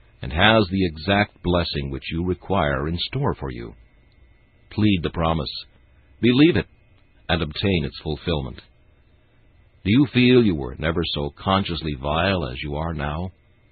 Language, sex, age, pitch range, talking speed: English, male, 50-69, 80-105 Hz, 150 wpm